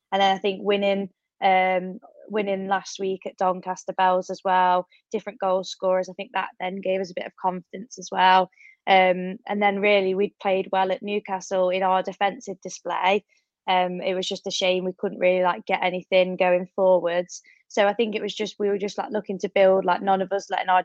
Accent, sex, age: British, female, 20-39